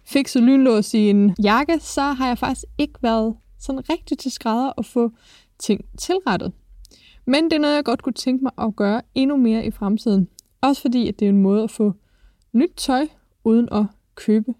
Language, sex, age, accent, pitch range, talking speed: Danish, female, 20-39, native, 215-280 Hz, 195 wpm